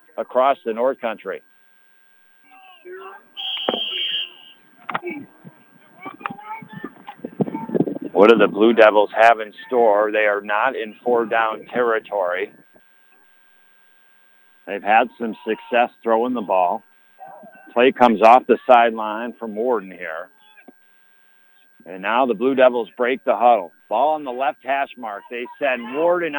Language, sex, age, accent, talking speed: English, male, 50-69, American, 115 wpm